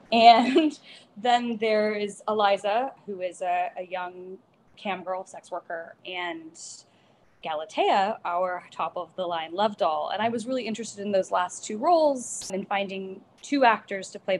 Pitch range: 175-210 Hz